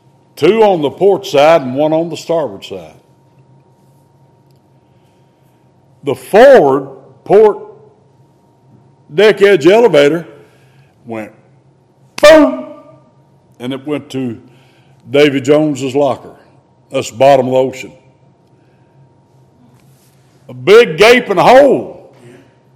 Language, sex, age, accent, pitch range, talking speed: English, male, 60-79, American, 130-185 Hz, 95 wpm